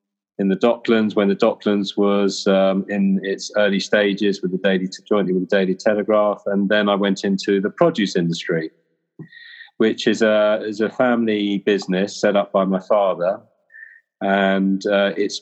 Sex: male